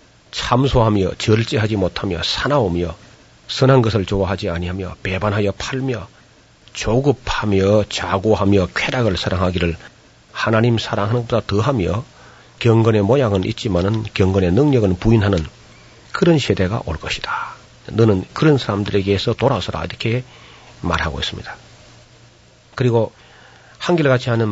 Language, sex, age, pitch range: Korean, male, 40-59, 95-125 Hz